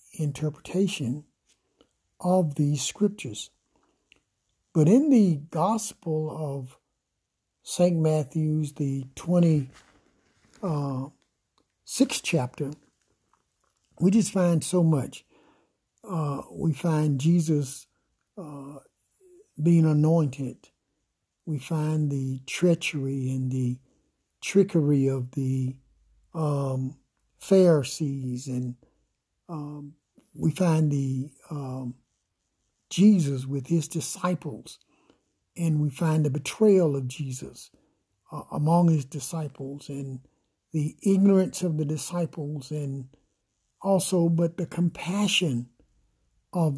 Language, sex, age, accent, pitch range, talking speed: English, male, 60-79, American, 135-165 Hz, 90 wpm